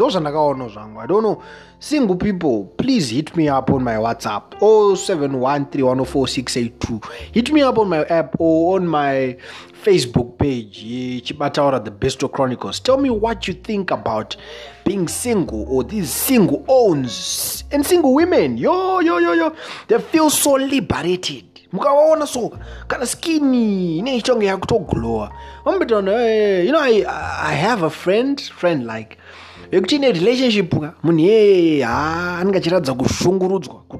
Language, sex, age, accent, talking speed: English, male, 30-49, South African, 130 wpm